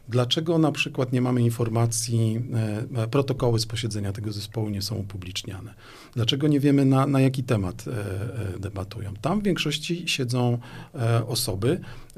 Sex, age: male, 40-59